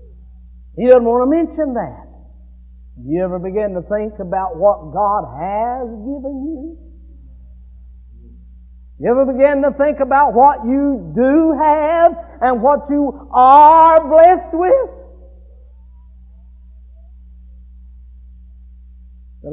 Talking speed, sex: 110 wpm, male